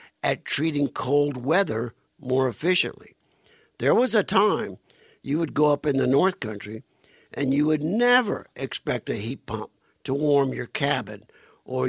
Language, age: English, 60-79